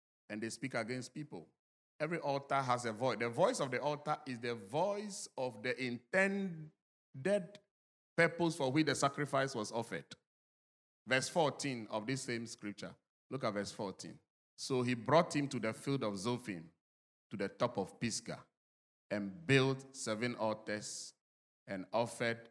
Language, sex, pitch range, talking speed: English, male, 105-145 Hz, 155 wpm